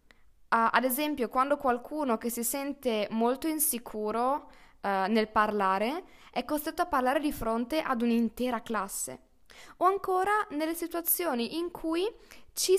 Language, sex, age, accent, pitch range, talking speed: Italian, female, 20-39, native, 215-290 Hz, 125 wpm